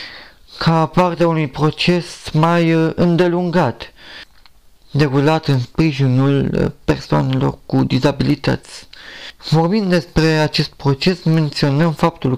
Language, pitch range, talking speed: Romanian, 140-170 Hz, 90 wpm